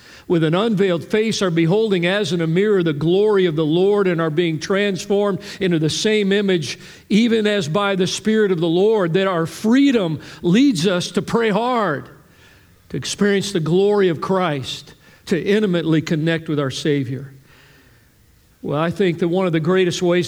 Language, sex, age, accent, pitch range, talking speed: English, male, 50-69, American, 160-200 Hz, 180 wpm